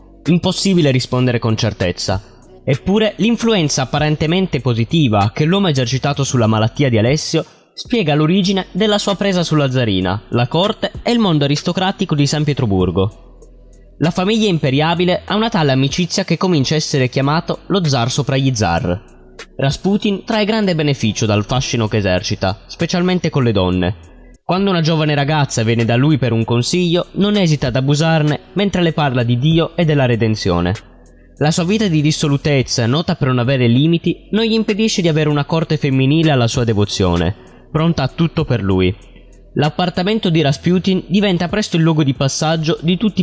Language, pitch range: Italian, 120-175 Hz